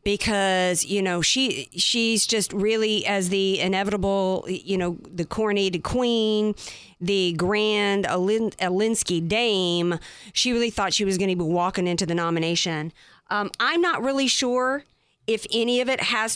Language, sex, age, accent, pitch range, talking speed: English, female, 40-59, American, 185-225 Hz, 150 wpm